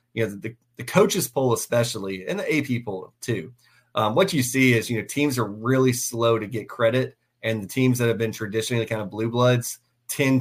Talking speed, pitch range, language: 220 wpm, 110-125 Hz, English